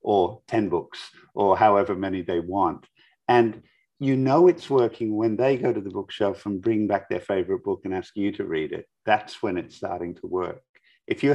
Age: 50-69